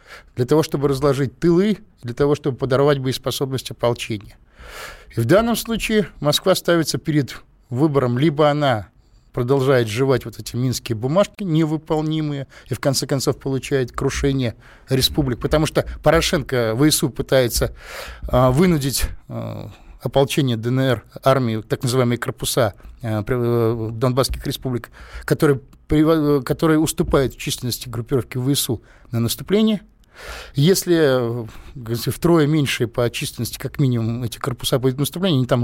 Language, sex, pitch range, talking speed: Russian, male, 120-150 Hz, 135 wpm